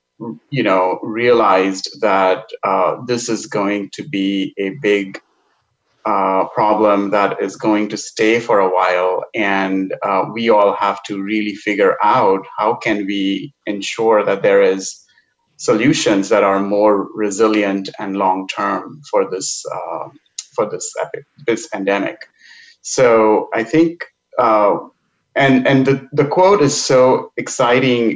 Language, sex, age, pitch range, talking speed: English, male, 30-49, 100-135 Hz, 135 wpm